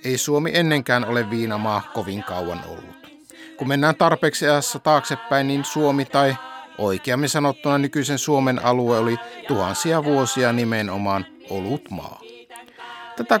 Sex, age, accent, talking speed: male, 60-79, native, 120 wpm